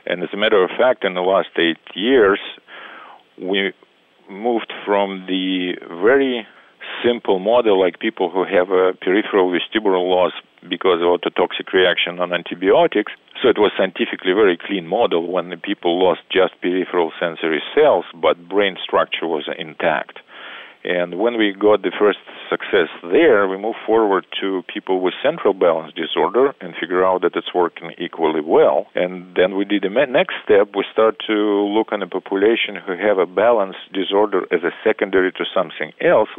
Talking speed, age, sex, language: 170 wpm, 50-69, male, English